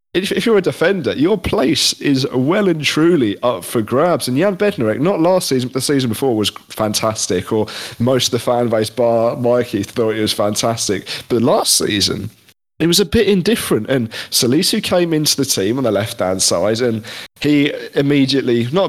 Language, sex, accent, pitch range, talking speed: English, male, British, 115-140 Hz, 190 wpm